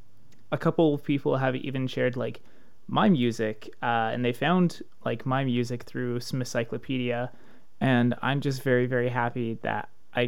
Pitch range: 115-130 Hz